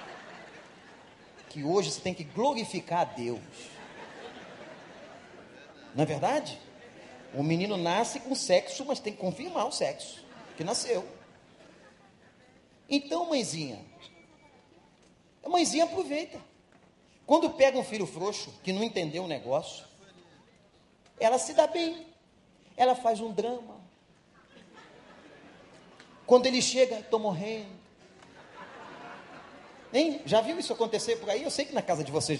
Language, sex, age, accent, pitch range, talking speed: Portuguese, male, 40-59, Brazilian, 185-260 Hz, 120 wpm